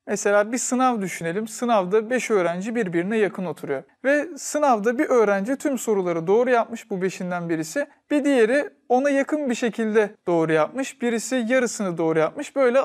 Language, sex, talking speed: Turkish, male, 160 wpm